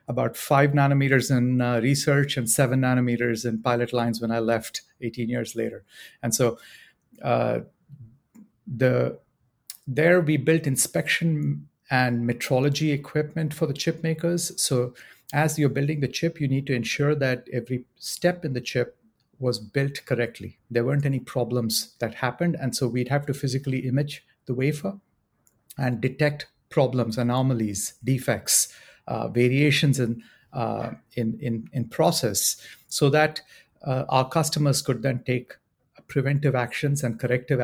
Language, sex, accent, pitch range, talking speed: English, male, Indian, 120-145 Hz, 145 wpm